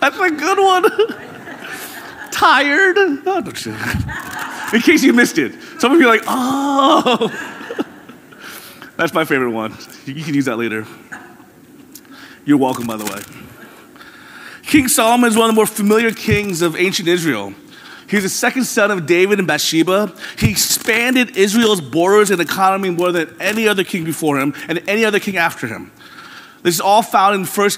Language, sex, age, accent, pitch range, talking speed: English, male, 30-49, American, 165-230 Hz, 165 wpm